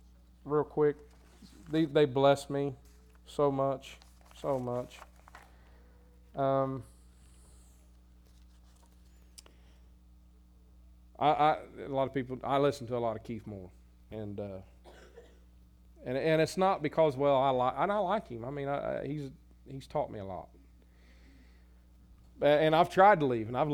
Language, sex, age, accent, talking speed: English, male, 40-59, American, 140 wpm